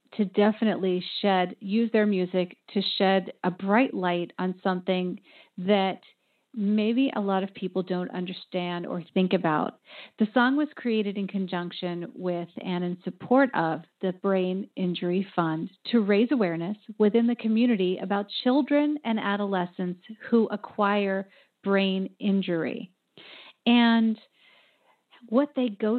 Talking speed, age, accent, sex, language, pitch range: 130 wpm, 40-59, American, female, English, 185-225 Hz